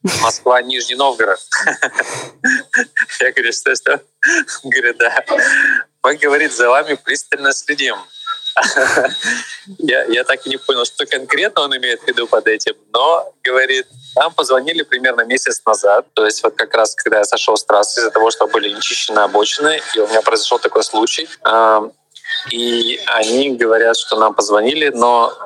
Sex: male